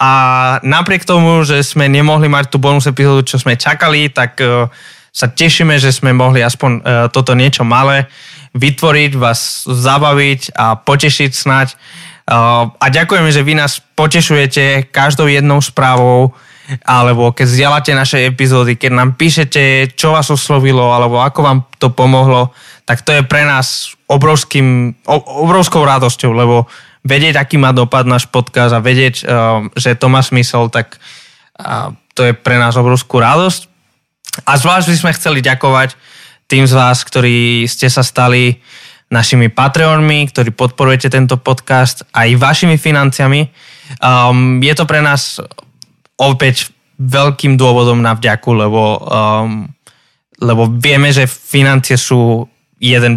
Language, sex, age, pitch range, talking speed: Slovak, male, 20-39, 125-145 Hz, 135 wpm